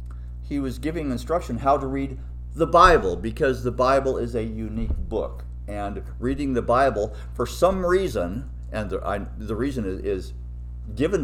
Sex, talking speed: male, 155 wpm